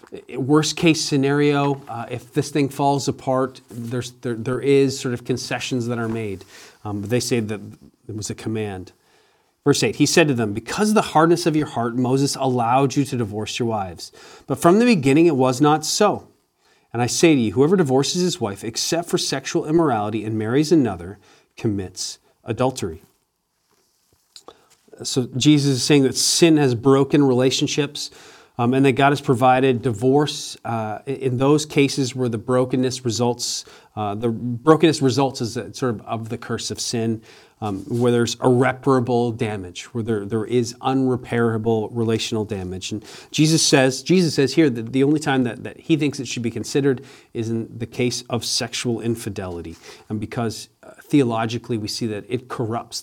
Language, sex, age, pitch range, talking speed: English, male, 40-59, 115-140 Hz, 175 wpm